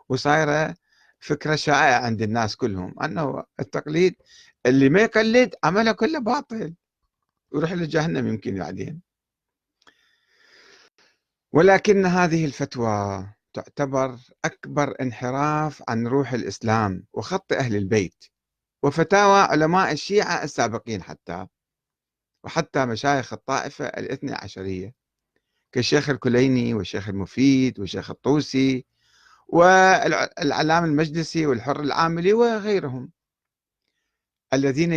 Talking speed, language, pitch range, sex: 90 wpm, Arabic, 115-160 Hz, male